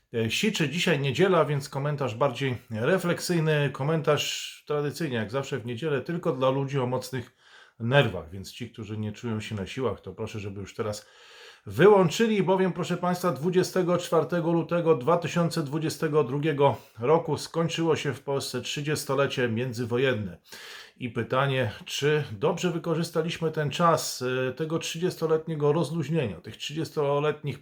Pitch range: 120-160 Hz